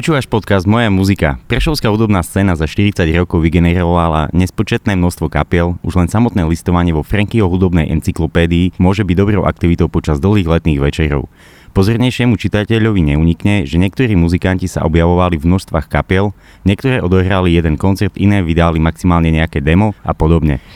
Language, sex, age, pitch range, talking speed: Slovak, male, 20-39, 80-95 Hz, 150 wpm